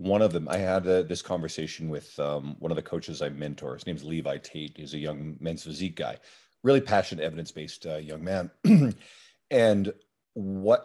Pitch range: 80-105 Hz